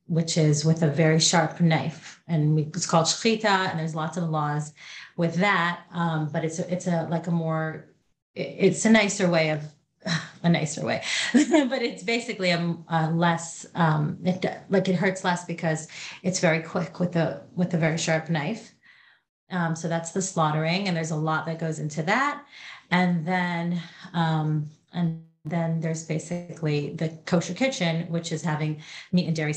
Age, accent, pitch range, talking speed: 30-49, American, 160-185 Hz, 185 wpm